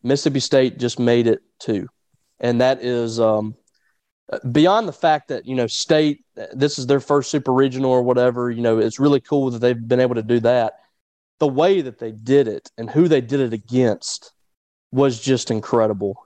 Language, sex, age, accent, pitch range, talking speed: English, male, 30-49, American, 115-135 Hz, 190 wpm